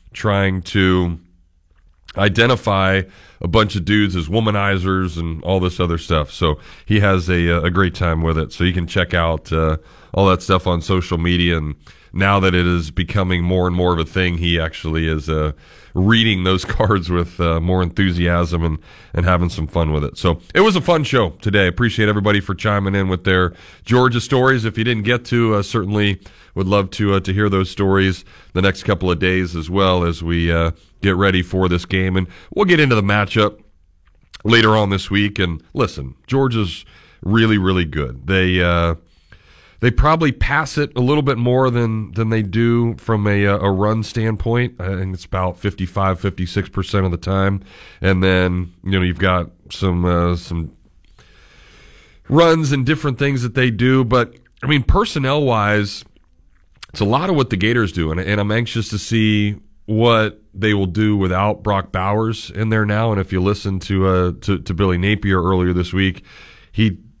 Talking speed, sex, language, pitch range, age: 195 wpm, male, English, 90-110 Hz, 30-49